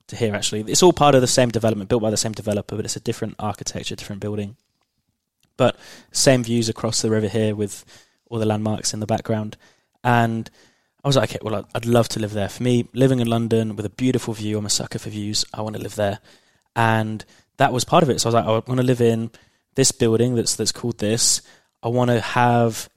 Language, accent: English, British